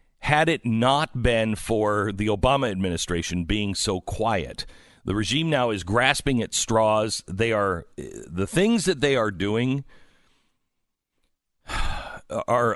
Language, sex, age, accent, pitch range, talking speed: English, male, 50-69, American, 100-140 Hz, 125 wpm